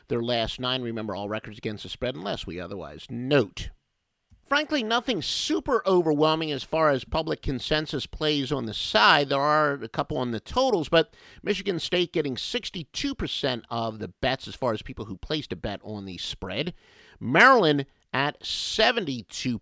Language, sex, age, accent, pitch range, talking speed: English, male, 50-69, American, 110-150 Hz, 170 wpm